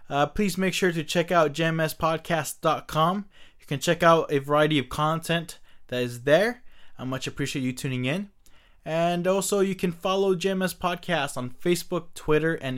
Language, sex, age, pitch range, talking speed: English, male, 20-39, 125-170 Hz, 170 wpm